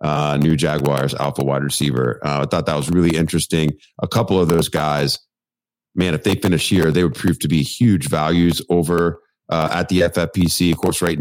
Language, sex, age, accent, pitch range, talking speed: English, male, 30-49, American, 75-85 Hz, 205 wpm